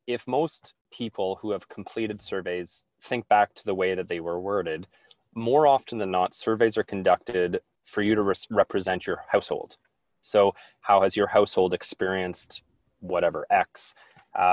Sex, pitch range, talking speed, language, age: male, 90-110 Hz, 155 wpm, English, 20-39